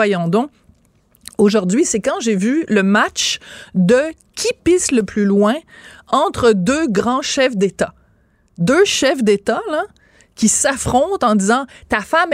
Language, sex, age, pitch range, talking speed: French, female, 30-49, 205-270 Hz, 140 wpm